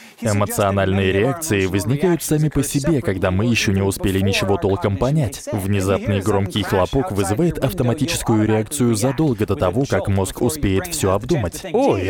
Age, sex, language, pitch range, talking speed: 20-39, male, Russian, 100-145 Hz, 145 wpm